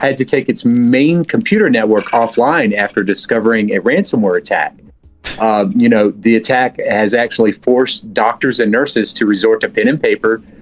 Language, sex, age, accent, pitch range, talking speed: English, male, 40-59, American, 105-140 Hz, 170 wpm